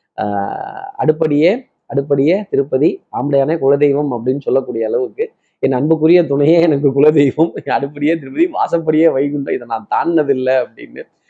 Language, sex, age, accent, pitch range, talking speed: Tamil, male, 20-39, native, 130-165 Hz, 115 wpm